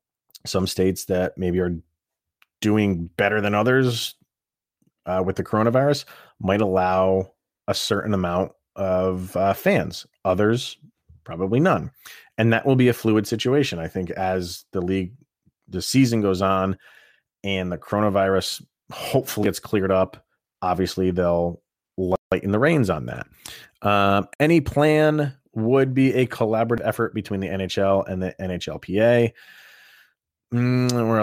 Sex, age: male, 30-49